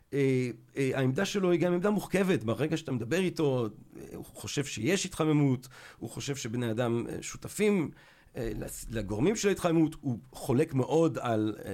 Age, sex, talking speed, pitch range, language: 40-59, male, 160 wpm, 130-185 Hz, Hebrew